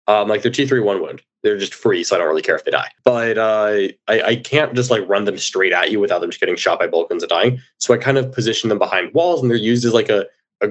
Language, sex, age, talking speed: English, male, 20-39, 290 wpm